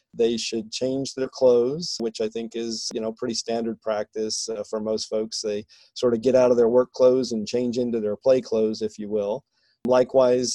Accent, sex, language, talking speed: American, male, English, 210 wpm